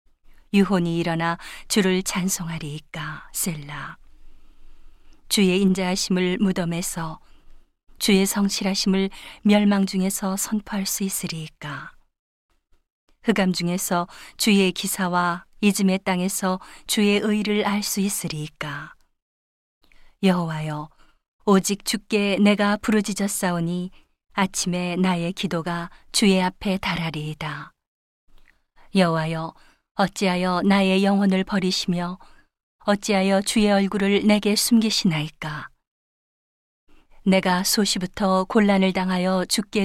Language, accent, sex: Korean, native, female